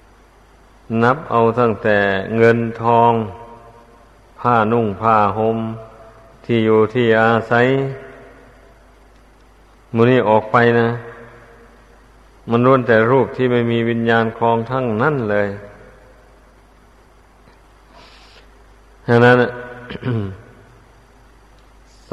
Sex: male